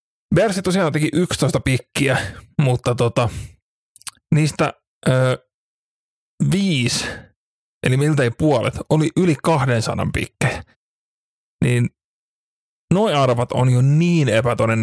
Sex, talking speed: male, 95 wpm